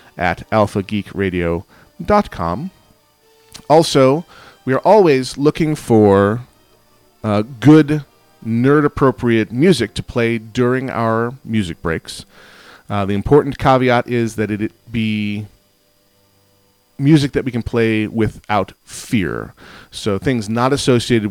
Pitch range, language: 100-120 Hz, English